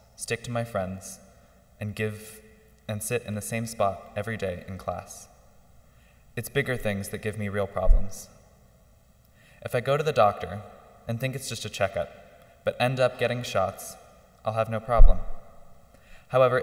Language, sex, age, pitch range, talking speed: English, male, 20-39, 100-120 Hz, 165 wpm